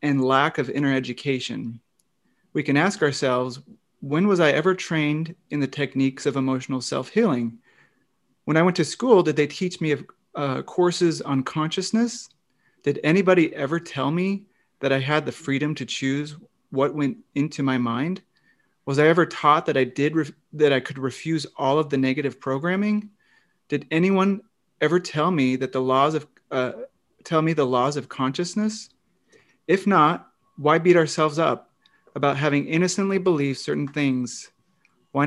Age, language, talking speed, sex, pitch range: 30-49, English, 165 wpm, male, 135-180 Hz